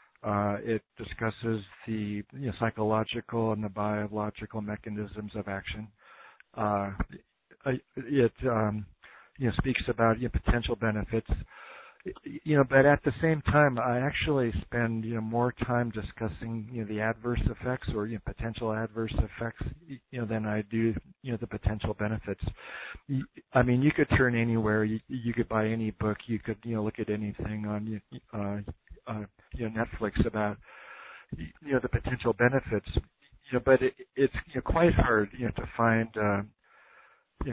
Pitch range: 105-120 Hz